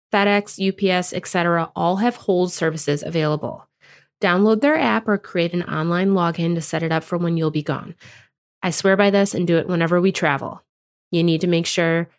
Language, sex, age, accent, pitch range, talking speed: English, female, 20-39, American, 155-205 Hz, 200 wpm